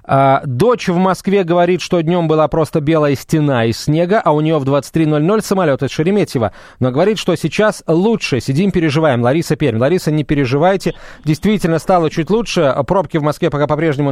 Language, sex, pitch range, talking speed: Russian, male, 135-185 Hz, 180 wpm